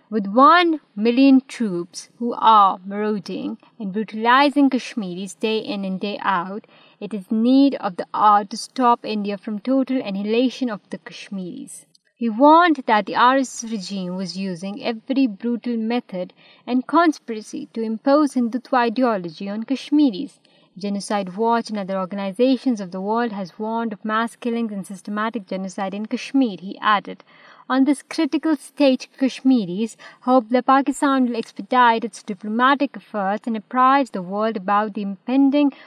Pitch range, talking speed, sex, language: 205-260 Hz, 150 wpm, female, Urdu